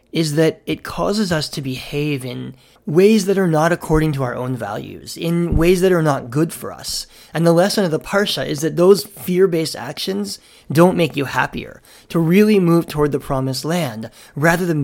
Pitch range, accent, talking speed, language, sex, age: 125-165 Hz, American, 200 wpm, English, male, 30-49